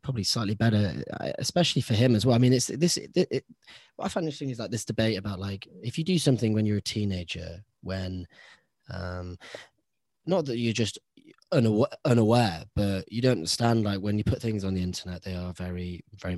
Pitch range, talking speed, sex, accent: 95-125 Hz, 195 wpm, male, British